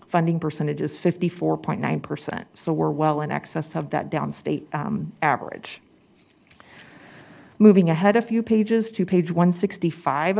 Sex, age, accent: female, 40-59, American